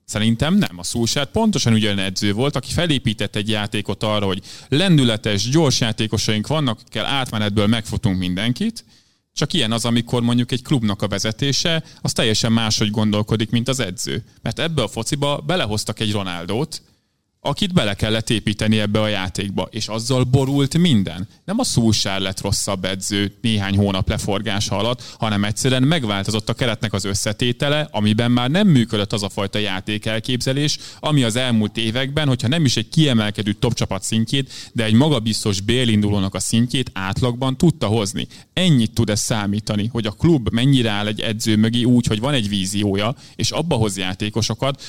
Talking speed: 165 wpm